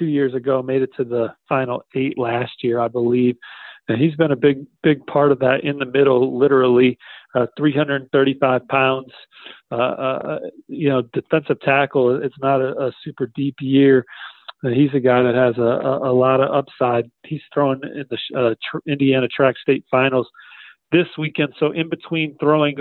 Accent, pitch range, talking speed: American, 130-145 Hz, 180 wpm